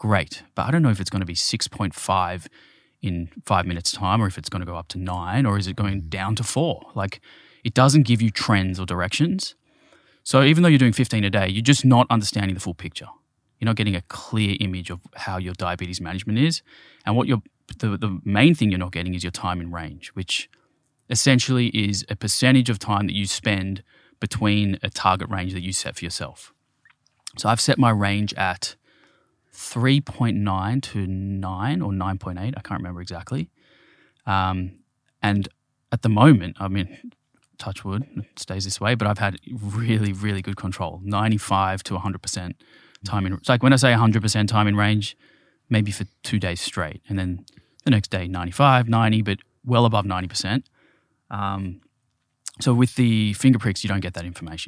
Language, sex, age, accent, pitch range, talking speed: English, male, 20-39, Australian, 95-120 Hz, 195 wpm